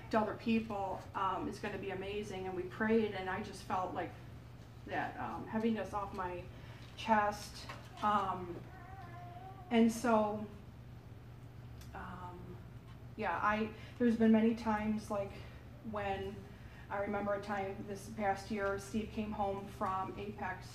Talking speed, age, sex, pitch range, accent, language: 135 wpm, 30-49, female, 180-225 Hz, American, English